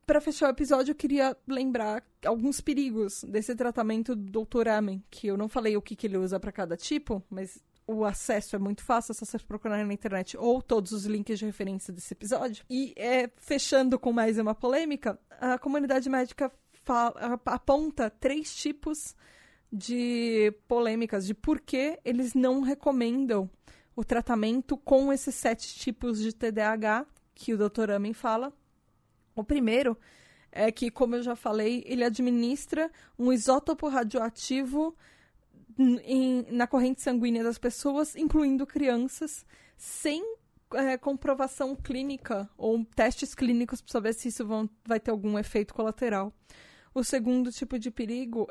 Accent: Brazilian